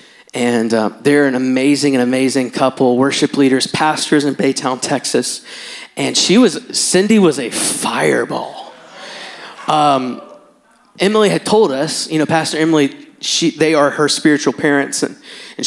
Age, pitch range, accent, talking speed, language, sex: 20-39, 135-165 Hz, American, 145 wpm, English, male